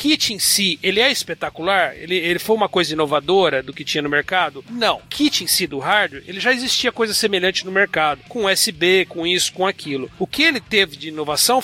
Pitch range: 160-225 Hz